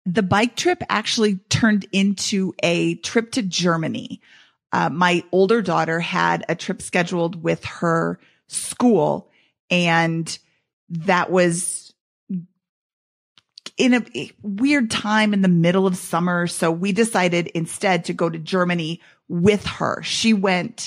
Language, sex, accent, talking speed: English, female, American, 130 wpm